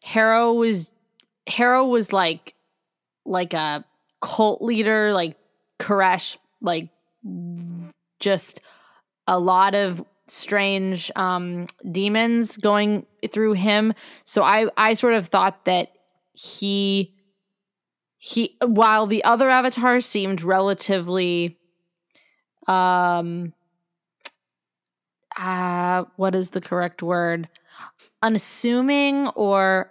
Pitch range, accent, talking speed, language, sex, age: 180-220 Hz, American, 90 wpm, English, female, 20-39